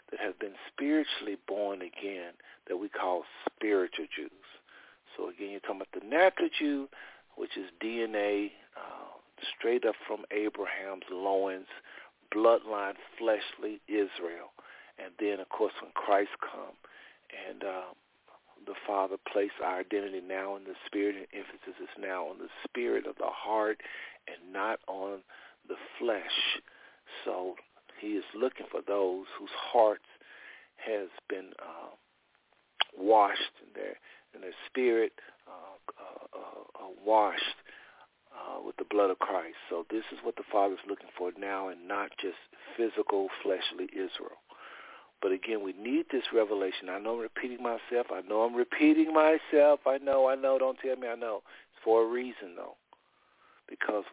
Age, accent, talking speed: 50-69, American, 155 wpm